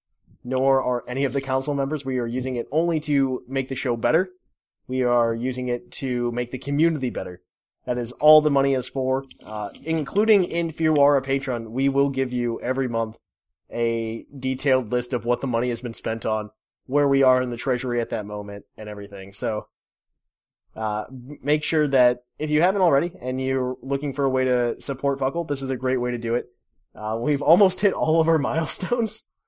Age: 20-39